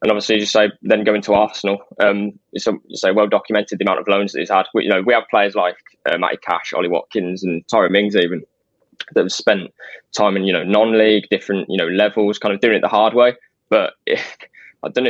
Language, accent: English, British